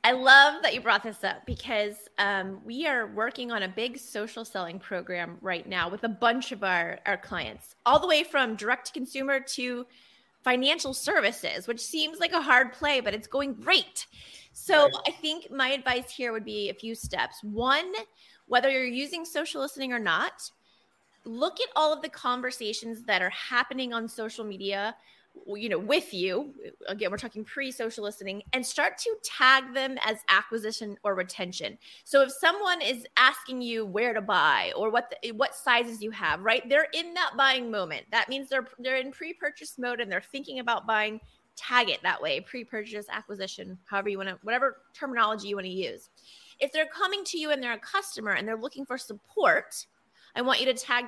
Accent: American